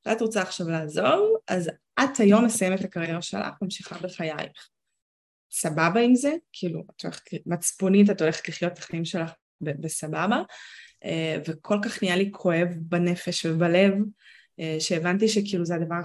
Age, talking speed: 20-39, 140 wpm